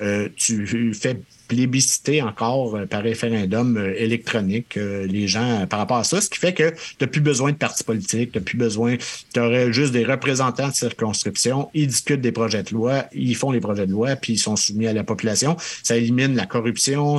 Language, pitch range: French, 105-125 Hz